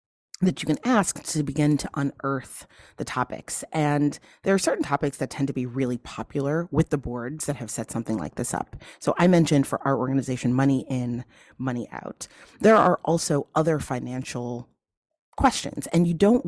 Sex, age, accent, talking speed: female, 30-49, American, 180 wpm